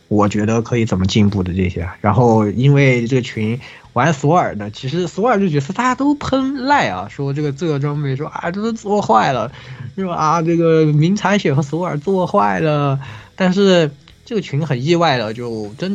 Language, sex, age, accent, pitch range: Chinese, male, 20-39, native, 105-155 Hz